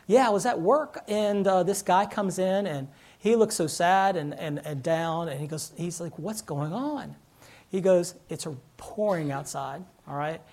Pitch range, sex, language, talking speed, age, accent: 155-200 Hz, male, English, 200 wpm, 40-59, American